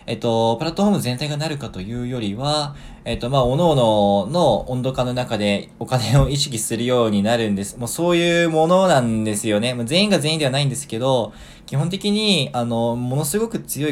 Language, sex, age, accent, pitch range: Japanese, male, 20-39, native, 110-155 Hz